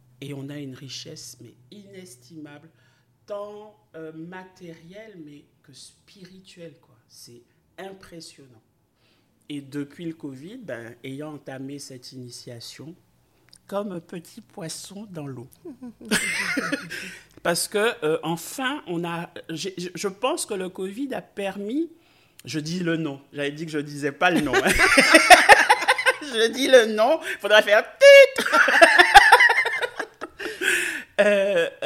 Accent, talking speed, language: French, 120 wpm, French